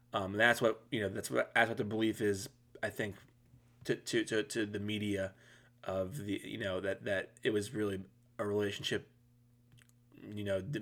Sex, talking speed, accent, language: male, 190 wpm, American, English